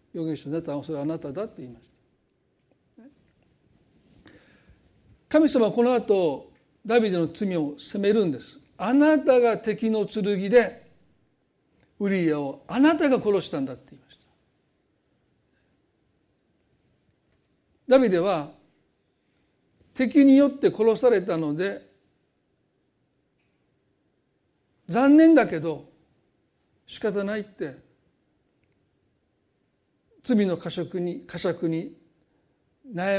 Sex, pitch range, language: male, 165-235 Hz, Japanese